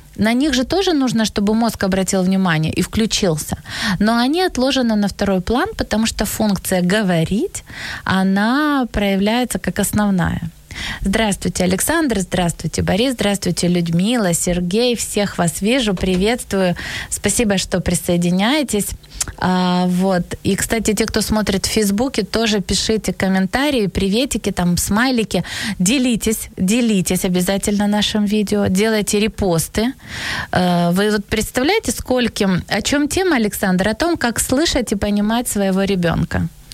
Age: 20-39